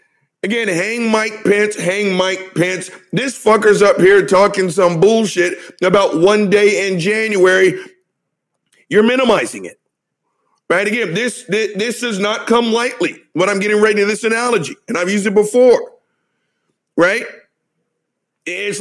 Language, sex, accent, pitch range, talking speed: English, male, American, 190-235 Hz, 145 wpm